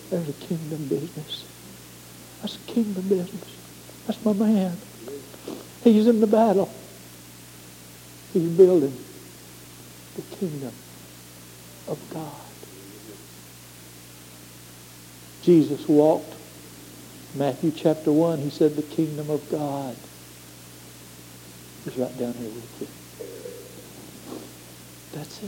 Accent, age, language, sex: American, 60-79, English, male